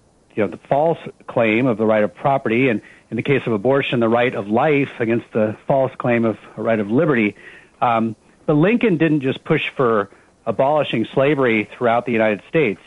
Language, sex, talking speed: English, male, 195 wpm